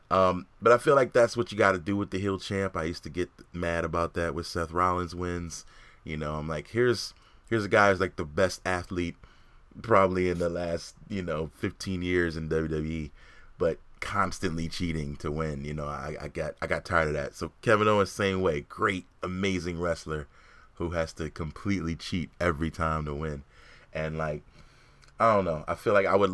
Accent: American